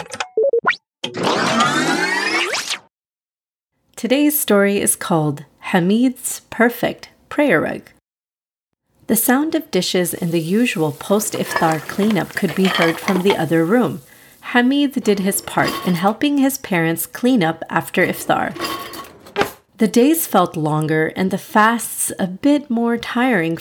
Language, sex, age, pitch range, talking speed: English, female, 30-49, 170-255 Hz, 120 wpm